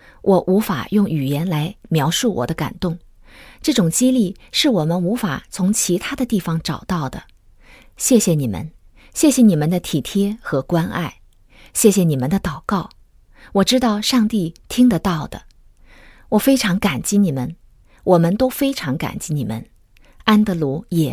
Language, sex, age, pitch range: Chinese, female, 20-39, 165-230 Hz